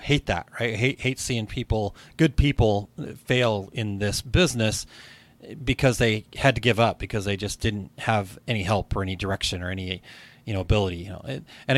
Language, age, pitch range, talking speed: English, 30-49, 105-130 Hz, 195 wpm